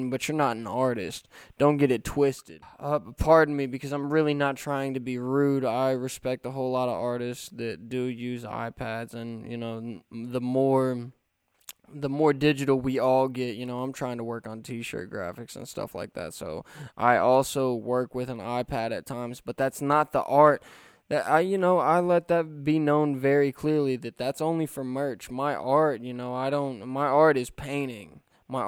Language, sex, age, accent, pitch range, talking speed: English, male, 10-29, American, 120-140 Hz, 200 wpm